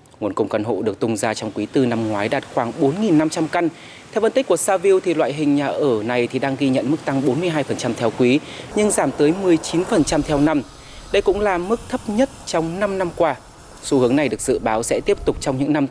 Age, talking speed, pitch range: 30-49, 240 wpm, 135-185 Hz